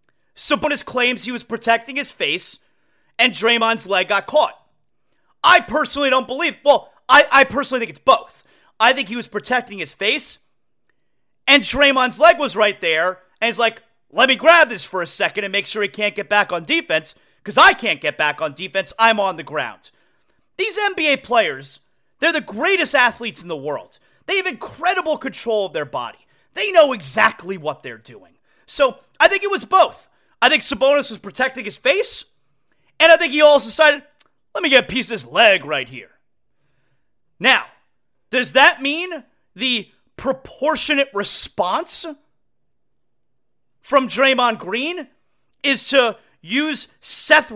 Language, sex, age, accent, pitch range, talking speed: English, male, 30-49, American, 210-300 Hz, 165 wpm